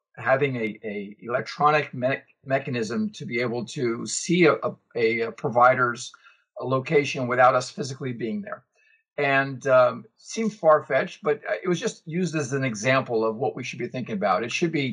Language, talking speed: English, 180 wpm